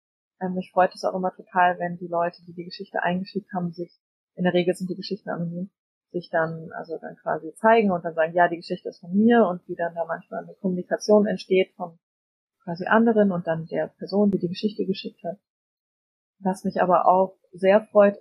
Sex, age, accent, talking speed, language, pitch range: female, 20-39, German, 210 wpm, German, 175-200 Hz